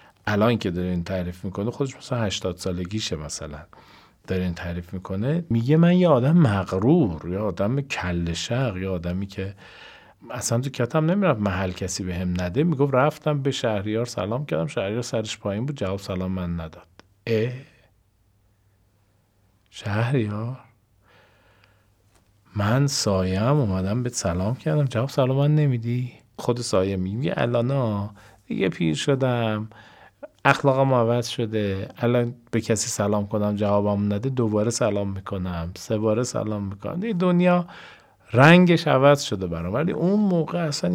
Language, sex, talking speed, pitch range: Persian, male, 140 wpm, 100-145 Hz